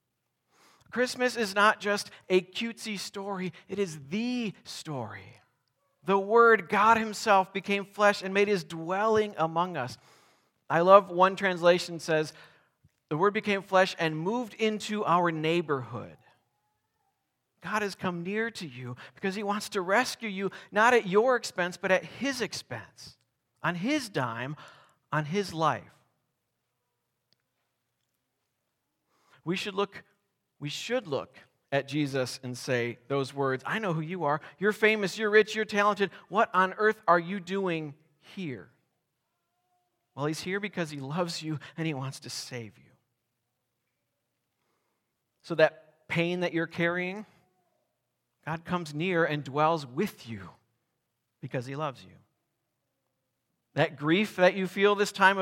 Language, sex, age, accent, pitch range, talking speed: English, male, 40-59, American, 145-200 Hz, 140 wpm